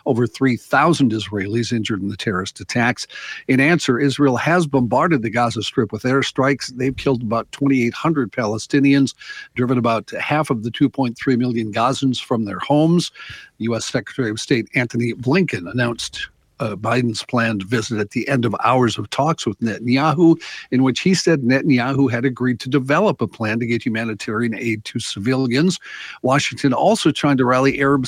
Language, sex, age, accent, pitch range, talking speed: English, male, 50-69, American, 115-140 Hz, 165 wpm